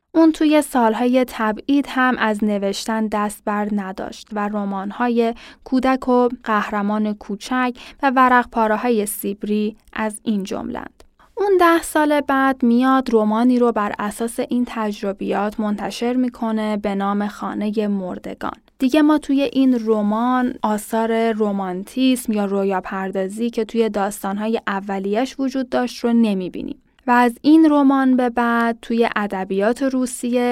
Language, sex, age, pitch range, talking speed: Persian, female, 10-29, 210-250 Hz, 130 wpm